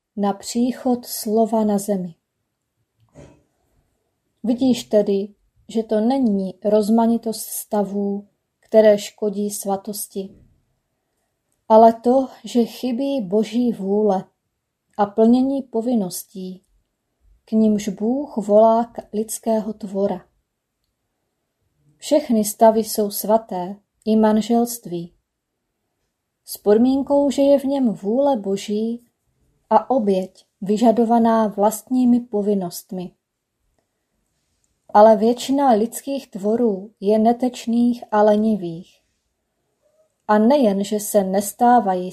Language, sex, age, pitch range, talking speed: Czech, female, 20-39, 200-235 Hz, 90 wpm